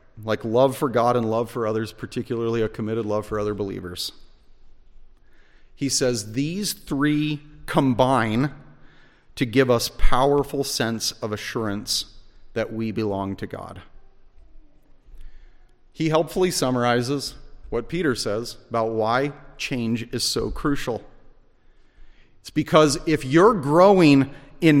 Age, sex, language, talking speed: 40-59, male, English, 120 wpm